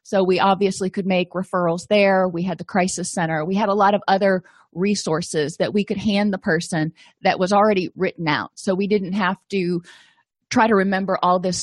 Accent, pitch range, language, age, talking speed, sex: American, 185-230 Hz, English, 30-49, 205 wpm, female